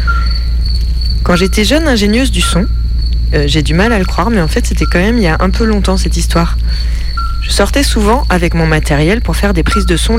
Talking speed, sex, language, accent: 230 wpm, female, French, French